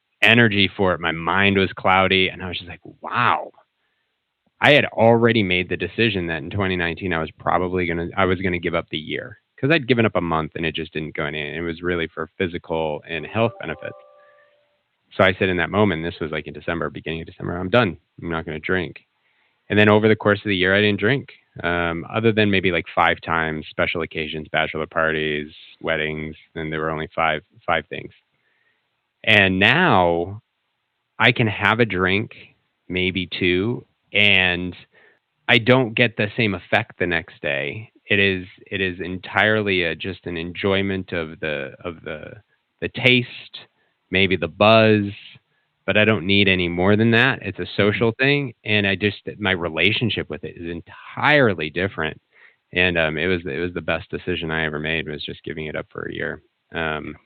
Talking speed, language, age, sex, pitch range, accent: 190 wpm, English, 30-49, male, 80-105 Hz, American